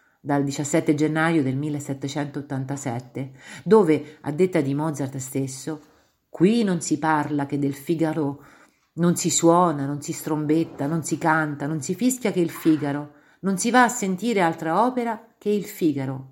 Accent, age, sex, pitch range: native, 50-69, female, 145-185 Hz